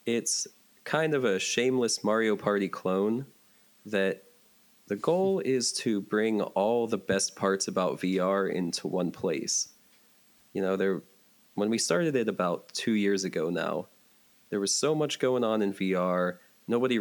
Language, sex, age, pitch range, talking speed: English, male, 20-39, 95-110 Hz, 155 wpm